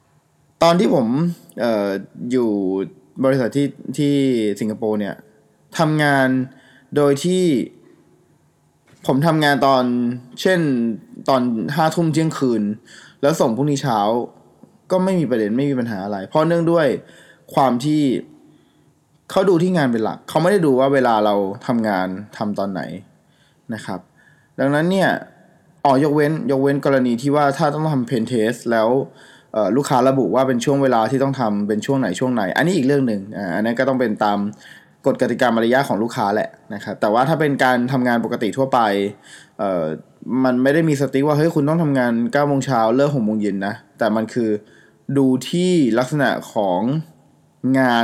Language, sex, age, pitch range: Thai, male, 20-39, 110-145 Hz